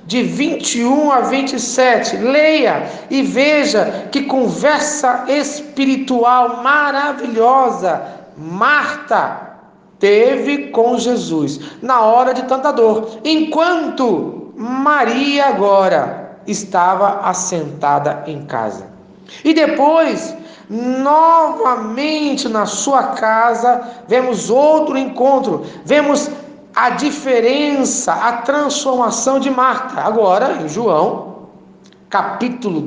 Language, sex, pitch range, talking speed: Portuguese, male, 235-285 Hz, 85 wpm